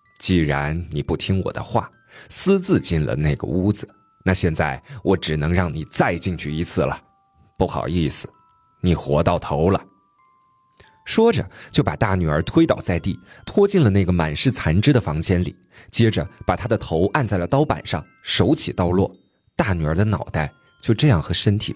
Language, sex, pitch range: Chinese, male, 85-140 Hz